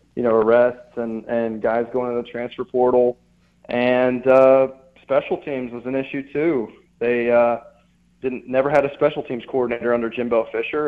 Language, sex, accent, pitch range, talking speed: English, male, American, 120-145 Hz, 170 wpm